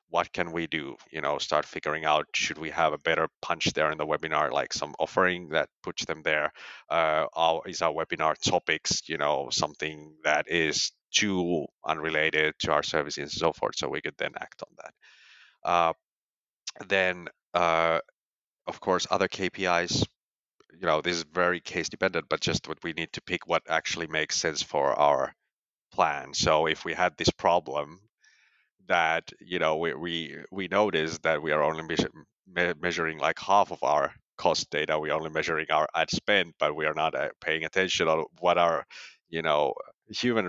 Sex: male